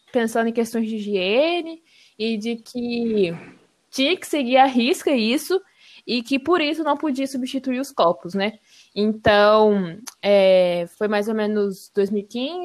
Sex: female